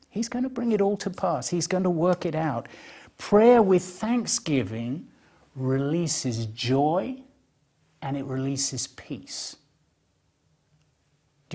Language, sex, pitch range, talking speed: English, male, 135-180 Hz, 125 wpm